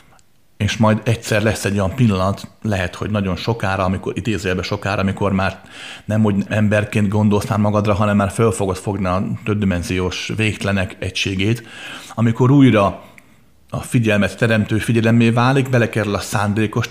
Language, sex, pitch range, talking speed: Hungarian, male, 100-120 Hz, 140 wpm